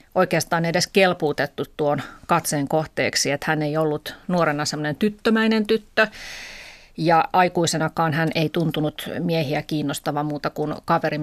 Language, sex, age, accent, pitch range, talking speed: Finnish, female, 30-49, native, 150-190 Hz, 125 wpm